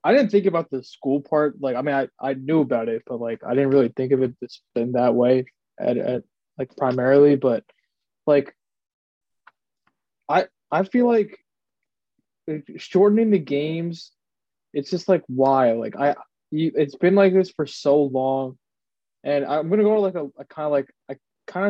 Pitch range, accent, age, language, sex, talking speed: 130-155 Hz, American, 20-39, English, male, 185 wpm